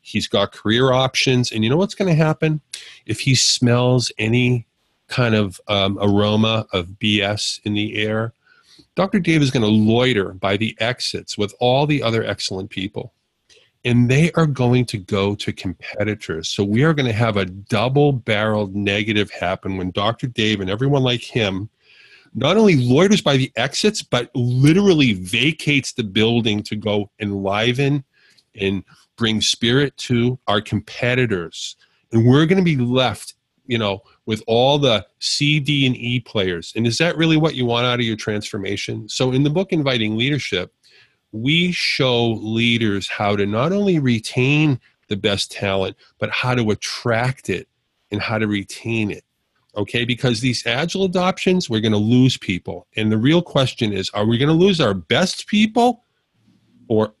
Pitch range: 105-135 Hz